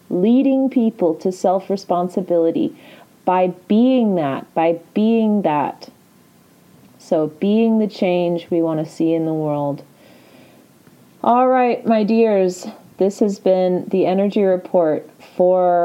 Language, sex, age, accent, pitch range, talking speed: English, female, 30-49, American, 170-205 Hz, 120 wpm